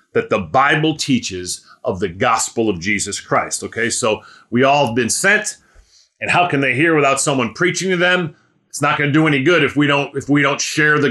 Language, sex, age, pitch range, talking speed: English, male, 40-59, 125-165 Hz, 225 wpm